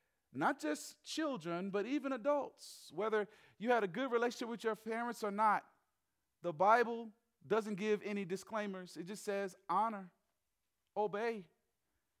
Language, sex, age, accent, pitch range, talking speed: English, male, 40-59, American, 125-200 Hz, 140 wpm